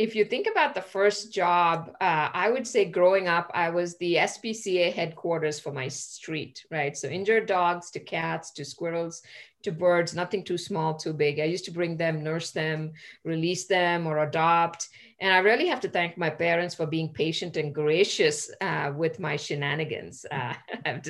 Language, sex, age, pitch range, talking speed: English, female, 50-69, 160-200 Hz, 185 wpm